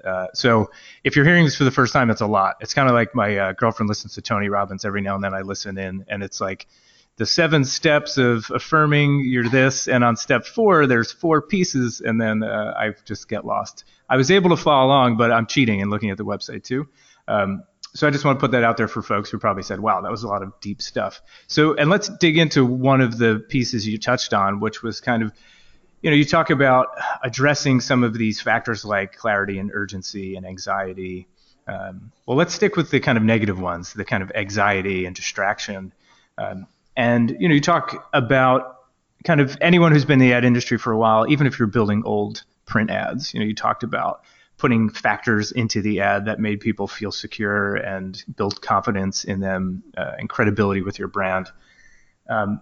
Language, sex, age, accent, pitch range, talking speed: English, male, 30-49, American, 100-135 Hz, 220 wpm